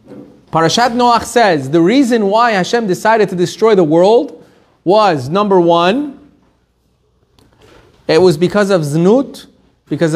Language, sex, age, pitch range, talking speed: English, male, 30-49, 170-240 Hz, 125 wpm